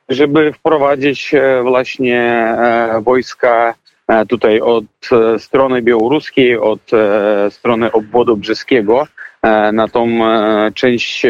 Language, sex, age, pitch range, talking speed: Polish, male, 40-59, 125-170 Hz, 80 wpm